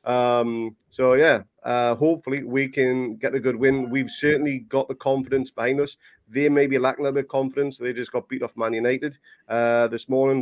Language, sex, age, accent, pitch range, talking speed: English, male, 30-49, British, 125-145 Hz, 220 wpm